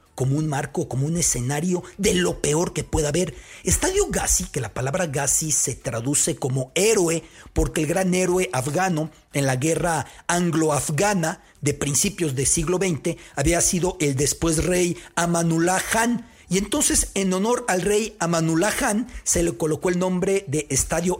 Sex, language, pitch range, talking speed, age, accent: male, English, 145-195 Hz, 165 wpm, 50-69, Mexican